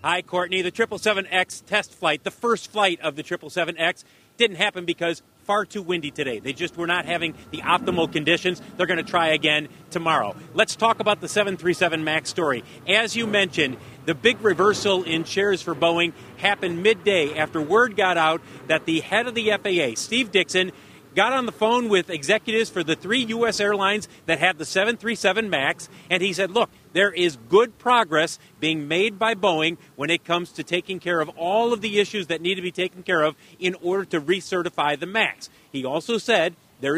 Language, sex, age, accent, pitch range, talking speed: English, male, 40-59, American, 165-210 Hz, 195 wpm